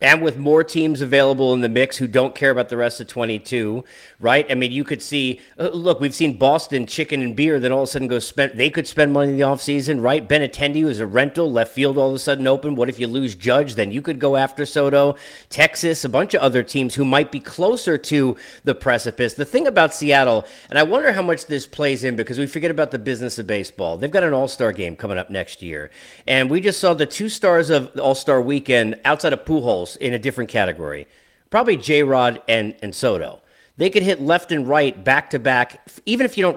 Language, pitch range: English, 130-160 Hz